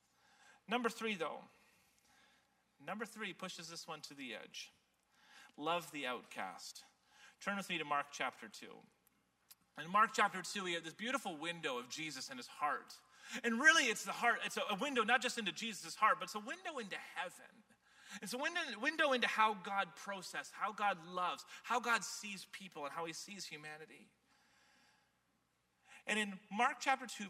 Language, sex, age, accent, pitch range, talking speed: Dutch, male, 30-49, American, 155-255 Hz, 175 wpm